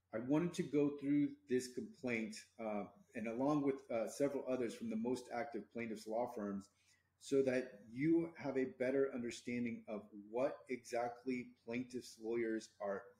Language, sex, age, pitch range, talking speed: English, male, 30-49, 110-135 Hz, 155 wpm